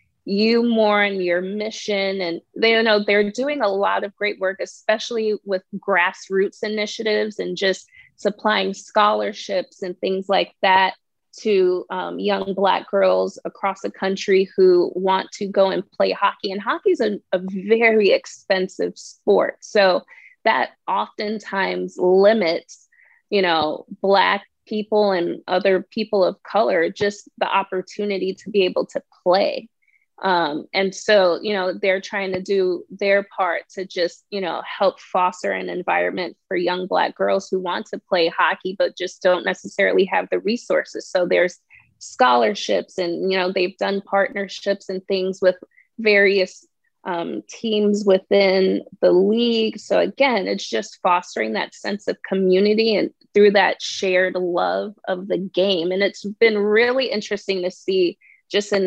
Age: 20-39